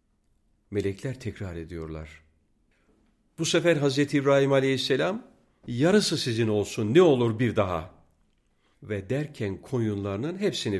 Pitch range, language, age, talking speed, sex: 95-130 Hz, Turkish, 50-69, 105 wpm, male